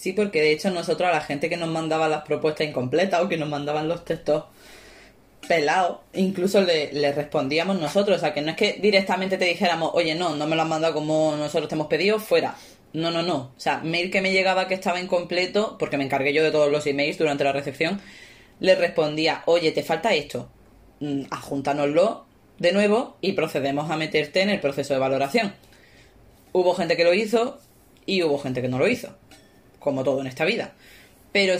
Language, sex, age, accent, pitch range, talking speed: Spanish, female, 20-39, Spanish, 150-180 Hz, 205 wpm